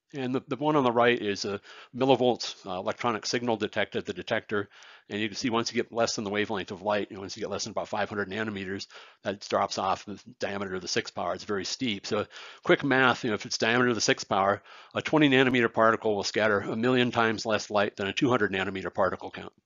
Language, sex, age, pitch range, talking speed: English, male, 40-59, 110-135 Hz, 245 wpm